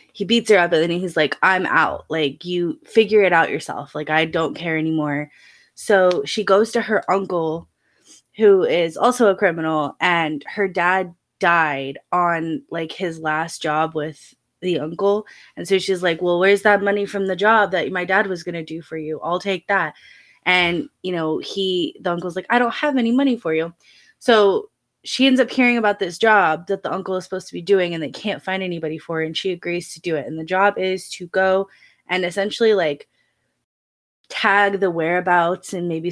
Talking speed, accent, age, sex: 205 wpm, American, 20-39, female